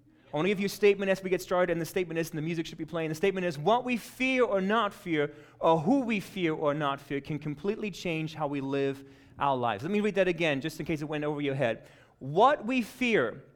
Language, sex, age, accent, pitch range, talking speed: English, male, 30-49, American, 145-200 Hz, 265 wpm